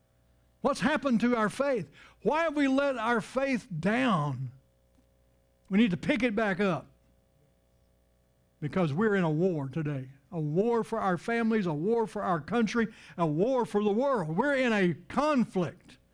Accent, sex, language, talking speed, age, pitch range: American, male, English, 165 wpm, 60-79, 155-215 Hz